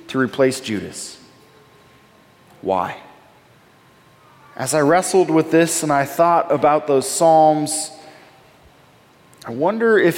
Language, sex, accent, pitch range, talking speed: English, male, American, 145-195 Hz, 105 wpm